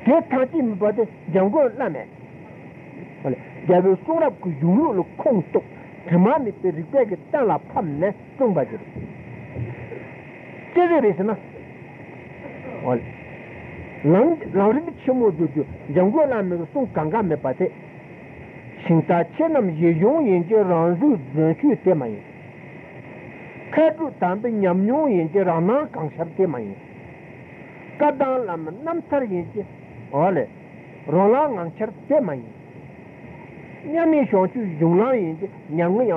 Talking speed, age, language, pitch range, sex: 55 wpm, 60-79, Italian, 170-270 Hz, male